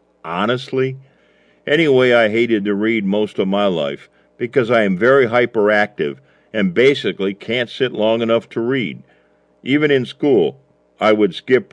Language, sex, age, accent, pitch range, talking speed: English, male, 50-69, American, 95-120 Hz, 150 wpm